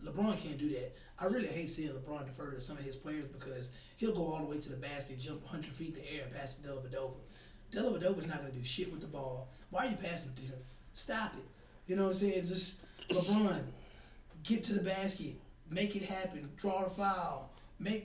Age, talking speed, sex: 20-39, 230 wpm, male